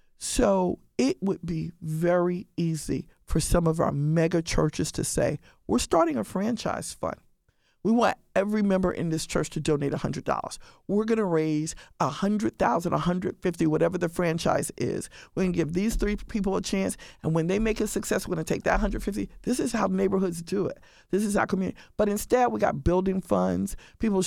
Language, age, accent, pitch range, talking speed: English, 50-69, American, 170-215 Hz, 200 wpm